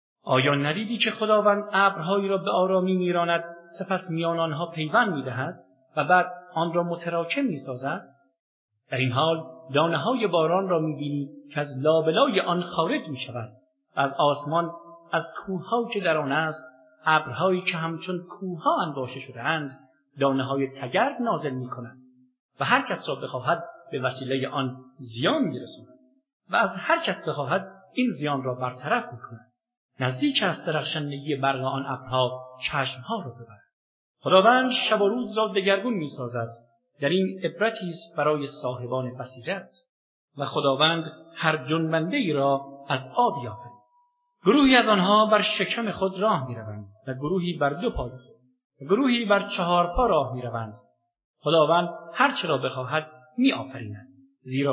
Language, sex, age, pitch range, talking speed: English, male, 50-69, 135-190 Hz, 145 wpm